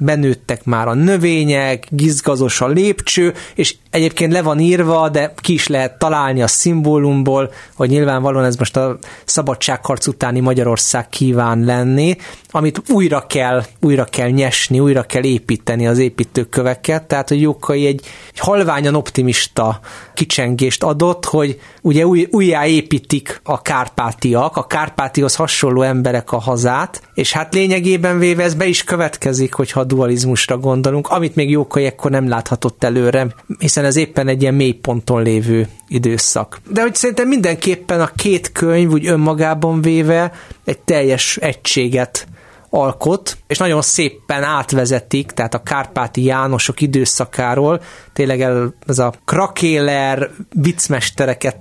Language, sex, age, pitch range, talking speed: Hungarian, male, 30-49, 125-160 Hz, 135 wpm